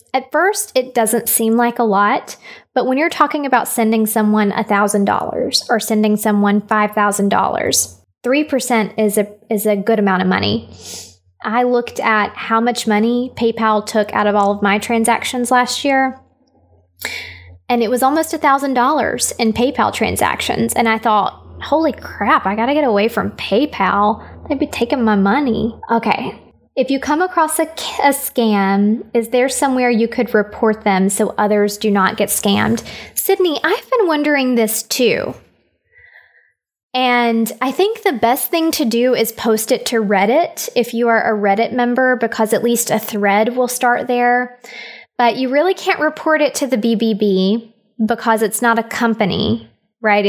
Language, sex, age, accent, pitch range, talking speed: English, female, 20-39, American, 210-255 Hz, 175 wpm